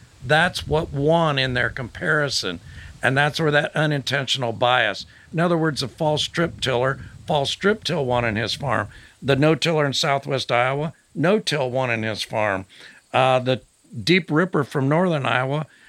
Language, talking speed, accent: English, 170 wpm, American